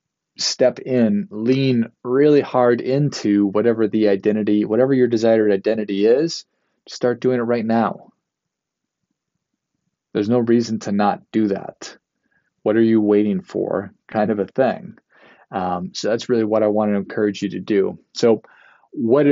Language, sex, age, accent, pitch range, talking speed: English, male, 20-39, American, 105-125 Hz, 150 wpm